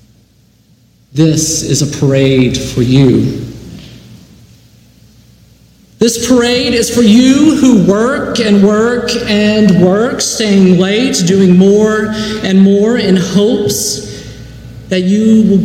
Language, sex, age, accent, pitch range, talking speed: English, male, 50-69, American, 155-210 Hz, 105 wpm